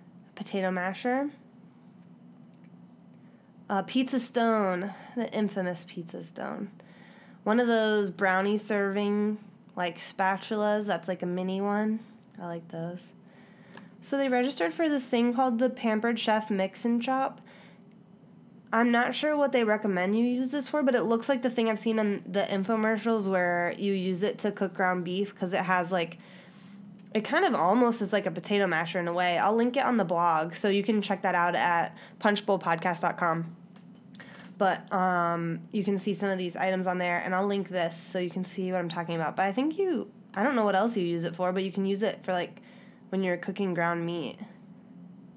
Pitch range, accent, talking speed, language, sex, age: 185-220 Hz, American, 190 wpm, English, female, 10-29